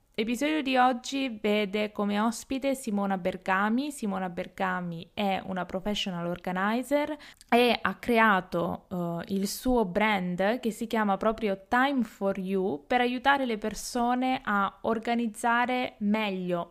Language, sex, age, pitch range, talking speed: Italian, female, 20-39, 200-255 Hz, 120 wpm